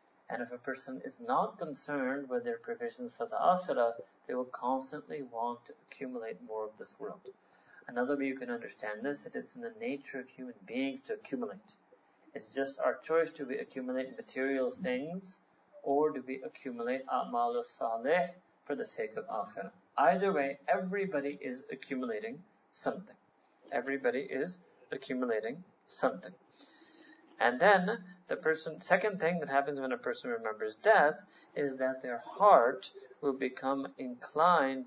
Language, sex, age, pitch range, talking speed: English, male, 30-49, 125-205 Hz, 150 wpm